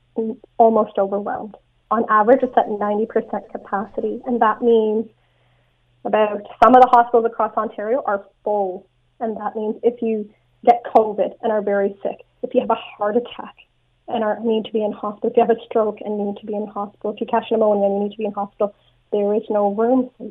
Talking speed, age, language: 210 wpm, 30-49, English